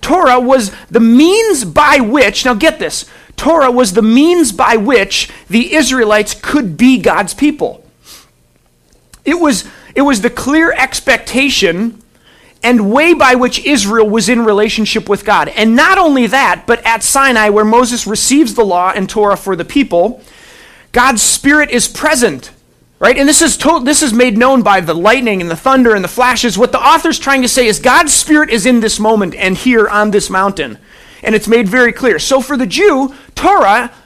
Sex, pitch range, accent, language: male, 205-275 Hz, American, English